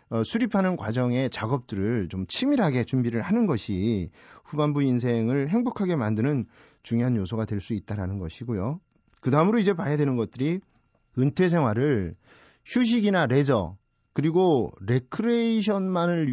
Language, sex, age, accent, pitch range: Korean, male, 40-59, native, 120-175 Hz